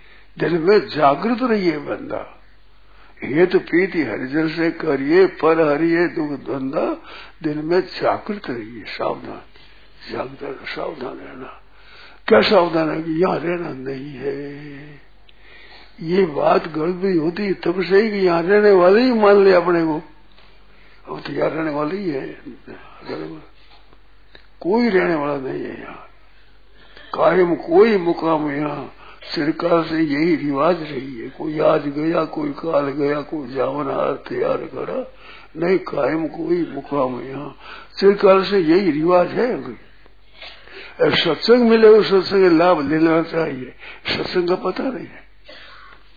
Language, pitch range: Hindi, 155-230 Hz